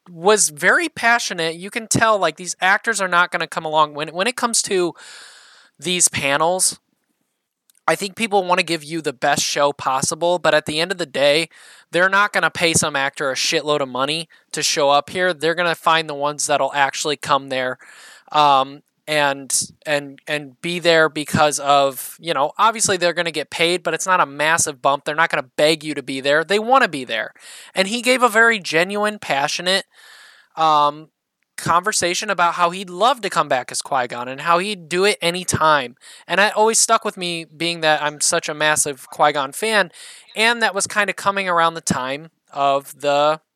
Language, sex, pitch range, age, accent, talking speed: English, male, 150-190 Hz, 20-39, American, 210 wpm